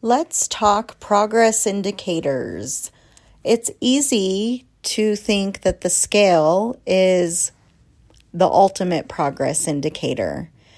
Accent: American